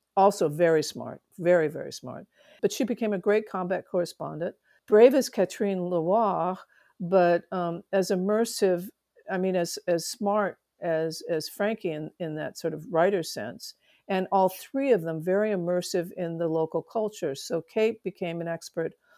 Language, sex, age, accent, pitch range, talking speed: English, female, 50-69, American, 165-205 Hz, 165 wpm